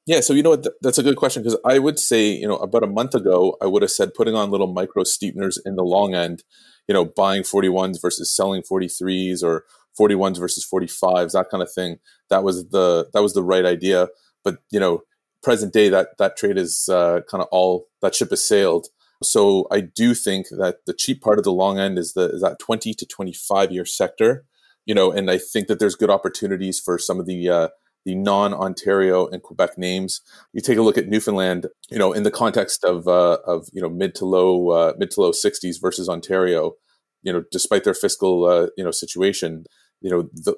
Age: 30-49